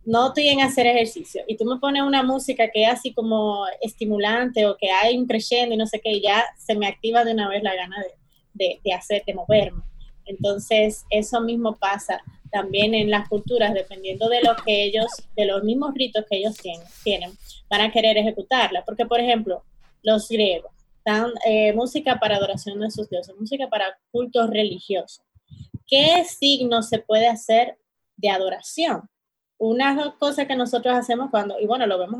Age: 20-39